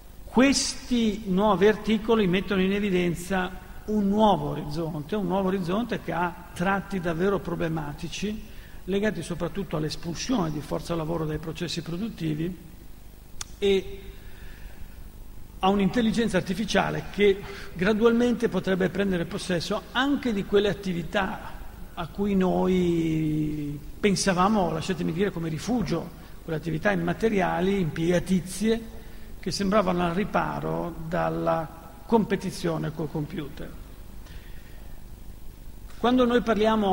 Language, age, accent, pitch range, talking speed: Italian, 50-69, native, 160-200 Hz, 100 wpm